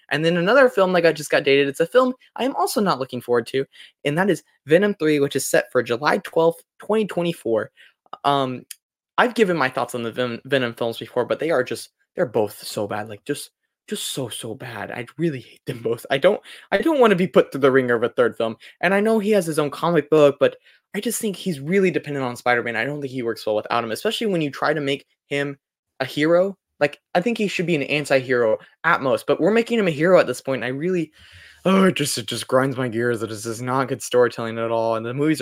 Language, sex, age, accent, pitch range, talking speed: English, male, 20-39, American, 125-185 Hz, 265 wpm